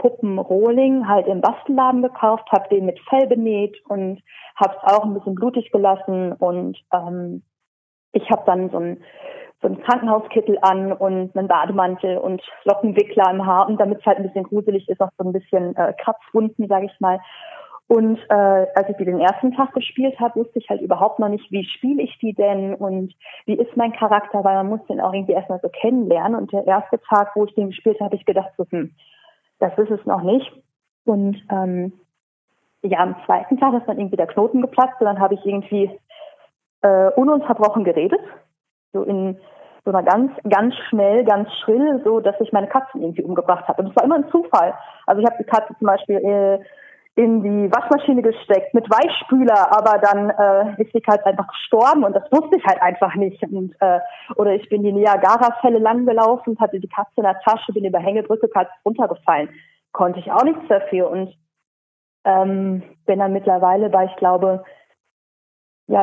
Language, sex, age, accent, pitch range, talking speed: German, female, 30-49, German, 190-230 Hz, 190 wpm